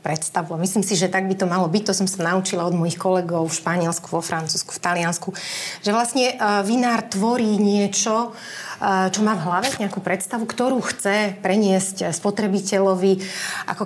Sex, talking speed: female, 160 wpm